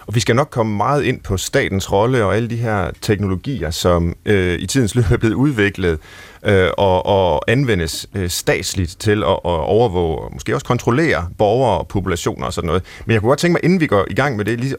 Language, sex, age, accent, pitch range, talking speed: Danish, male, 30-49, native, 95-130 Hz, 230 wpm